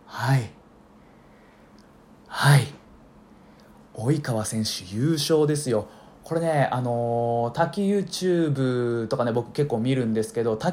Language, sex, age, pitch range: Japanese, male, 20-39, 120-165 Hz